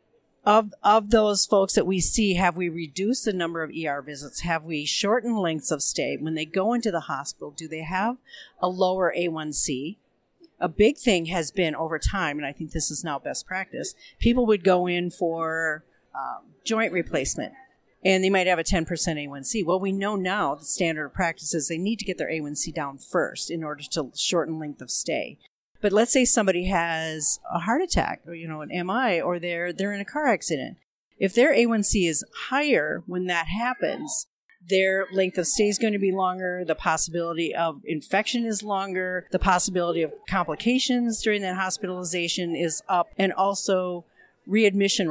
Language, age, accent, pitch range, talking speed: English, 50-69, American, 165-210 Hz, 190 wpm